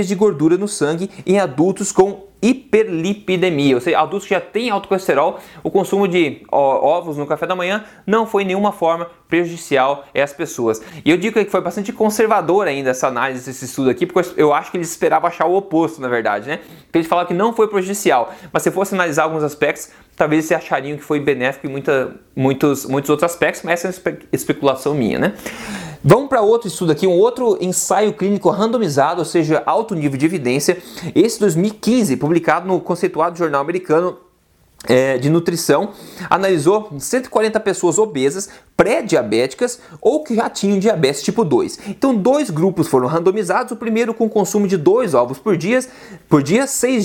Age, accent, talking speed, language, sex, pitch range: 20-39, Brazilian, 185 wpm, Portuguese, male, 155-210 Hz